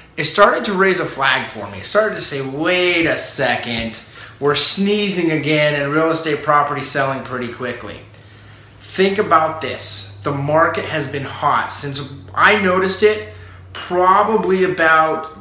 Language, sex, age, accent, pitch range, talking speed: English, male, 30-49, American, 135-175 Hz, 150 wpm